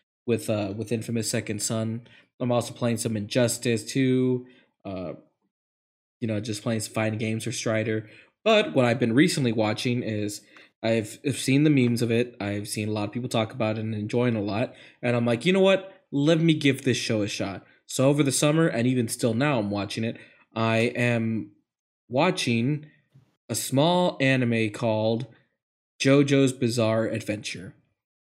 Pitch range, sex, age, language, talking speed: 115-135 Hz, male, 20-39, English, 180 wpm